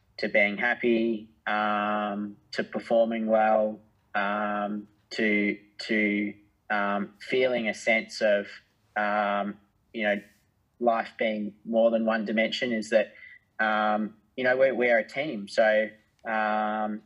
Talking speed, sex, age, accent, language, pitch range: 125 wpm, male, 20-39, Australian, English, 105-115 Hz